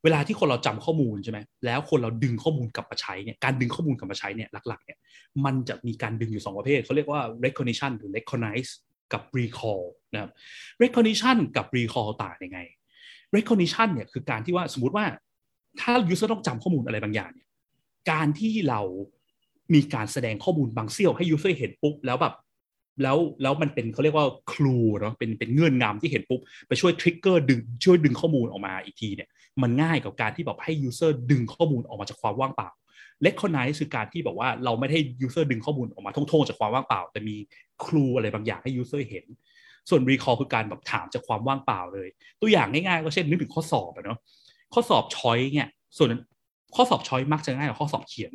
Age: 30-49